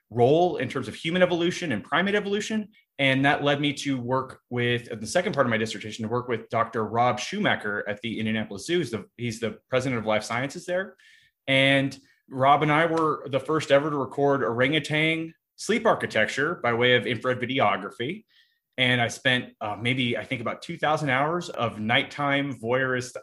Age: 30-49